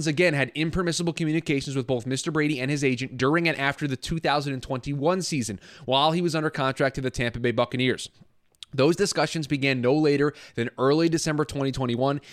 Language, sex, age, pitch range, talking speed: English, male, 20-39, 130-160 Hz, 175 wpm